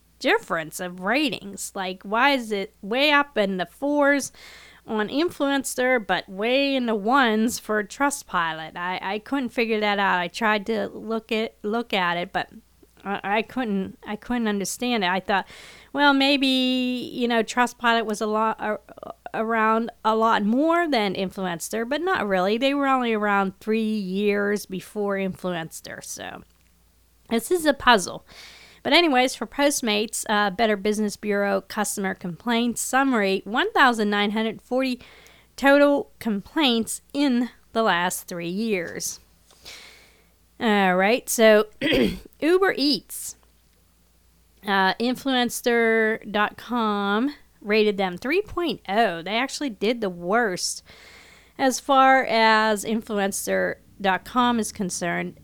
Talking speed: 125 wpm